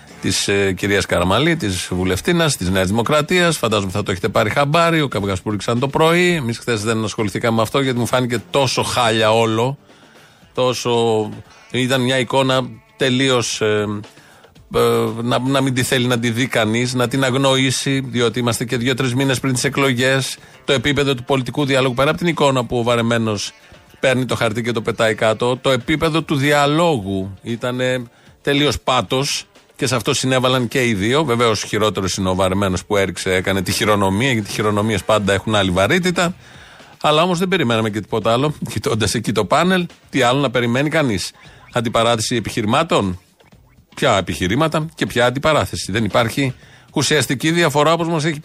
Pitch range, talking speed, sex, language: 110-140 Hz, 170 wpm, male, Greek